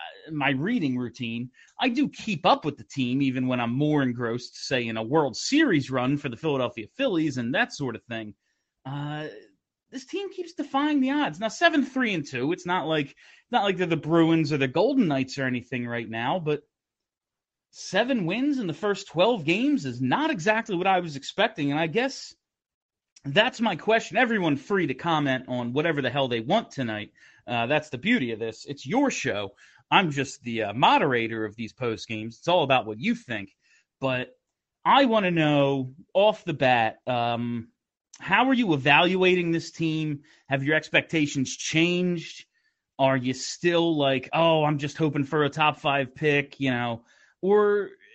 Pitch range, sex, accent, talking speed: 130-220 Hz, male, American, 180 wpm